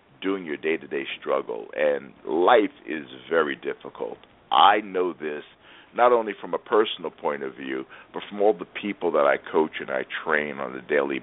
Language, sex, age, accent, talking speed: English, male, 50-69, American, 180 wpm